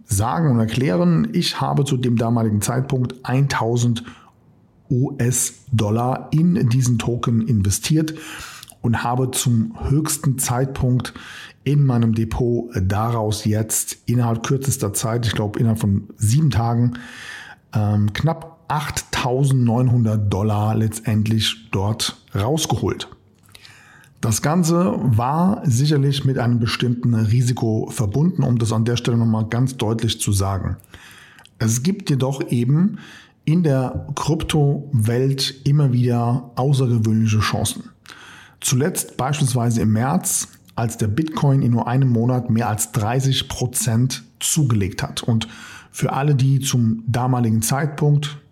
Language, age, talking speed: German, 50-69, 115 wpm